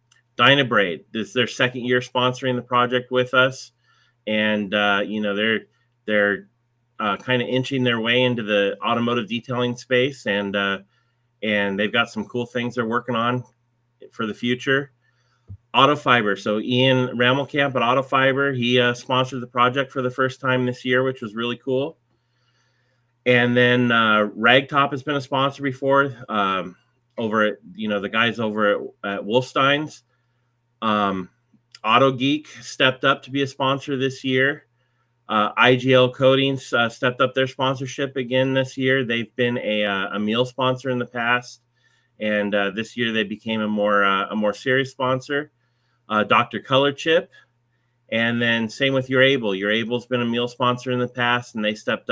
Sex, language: male, English